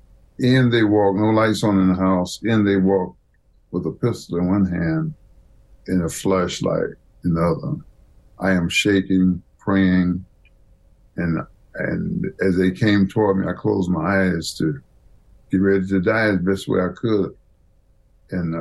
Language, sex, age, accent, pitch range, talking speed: English, male, 60-79, American, 90-100 Hz, 160 wpm